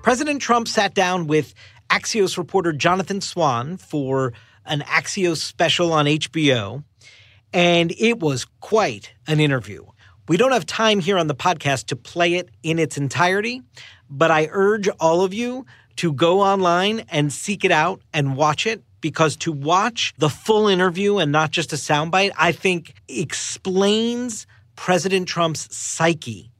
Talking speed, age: 155 wpm, 40-59